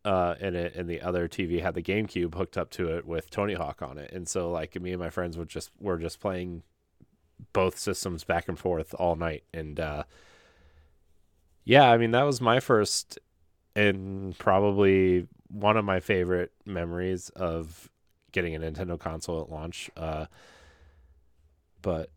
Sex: male